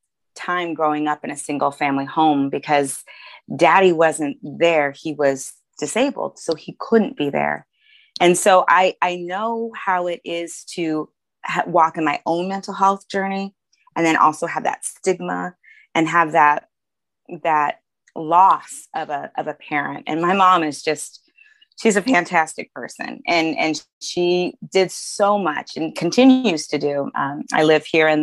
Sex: female